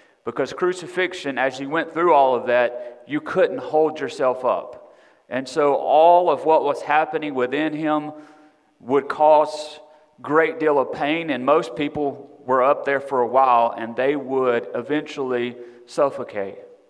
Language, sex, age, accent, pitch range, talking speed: English, male, 40-59, American, 135-180 Hz, 155 wpm